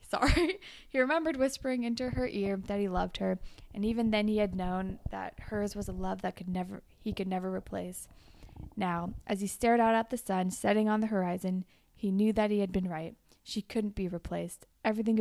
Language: English